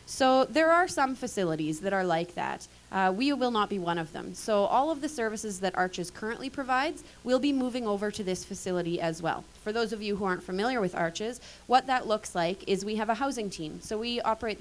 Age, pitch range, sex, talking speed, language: 20-39, 185-245 Hz, female, 235 wpm, English